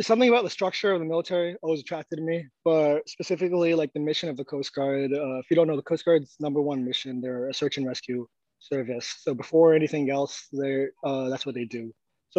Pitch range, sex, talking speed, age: 130-155 Hz, male, 230 wpm, 20-39